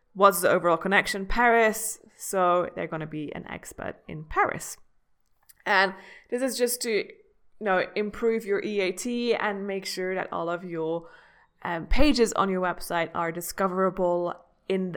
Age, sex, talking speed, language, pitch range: 20-39, female, 155 wpm, English, 175-225 Hz